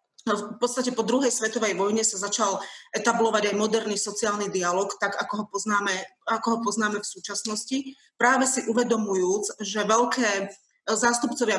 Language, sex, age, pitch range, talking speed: Slovak, female, 30-49, 200-230 Hz, 145 wpm